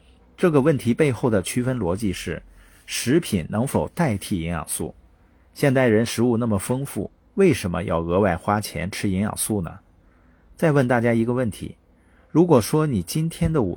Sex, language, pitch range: male, Chinese, 85-135 Hz